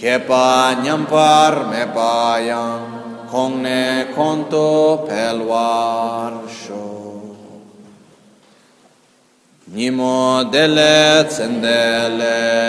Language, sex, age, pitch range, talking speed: Italian, male, 30-49, 115-150 Hz, 45 wpm